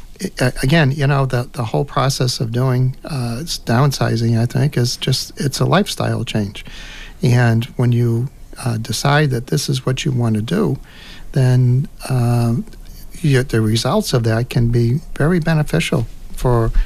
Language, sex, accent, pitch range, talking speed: English, male, American, 120-145 Hz, 160 wpm